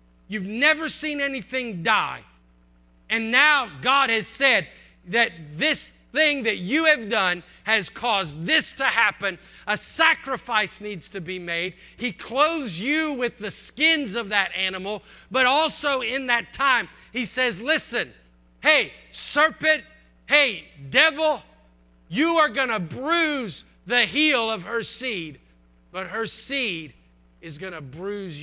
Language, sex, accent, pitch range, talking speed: English, male, American, 175-280 Hz, 140 wpm